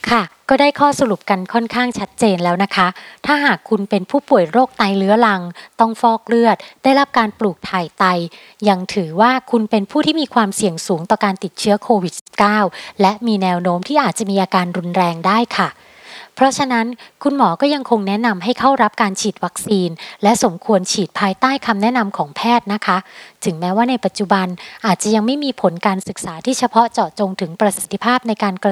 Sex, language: female, Thai